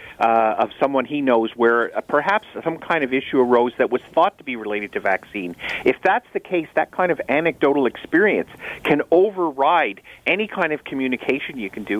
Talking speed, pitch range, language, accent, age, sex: 195 wpm, 125-180 Hz, English, American, 40-59, male